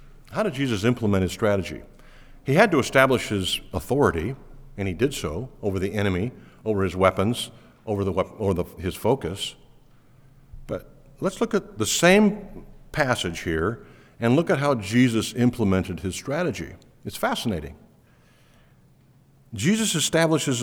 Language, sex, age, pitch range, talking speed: English, male, 50-69, 100-135 Hz, 140 wpm